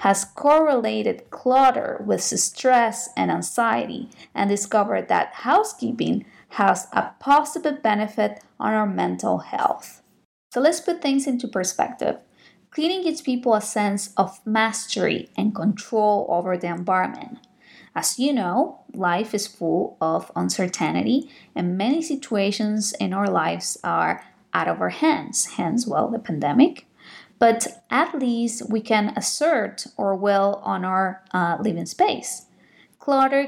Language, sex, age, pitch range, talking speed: English, female, 20-39, 185-250 Hz, 135 wpm